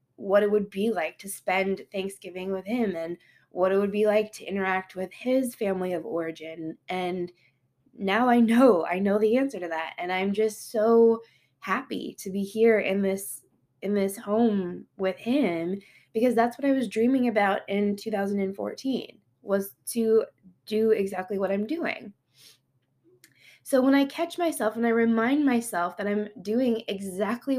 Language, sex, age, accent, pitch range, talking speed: English, female, 20-39, American, 185-230 Hz, 165 wpm